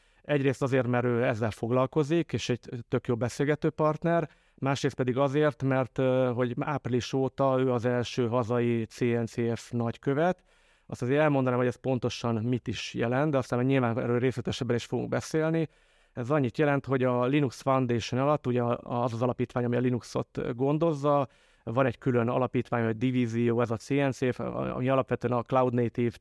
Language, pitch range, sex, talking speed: Hungarian, 120-135 Hz, male, 160 wpm